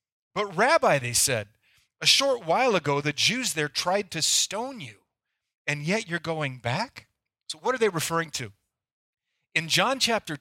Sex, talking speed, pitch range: male, 165 wpm, 145-195 Hz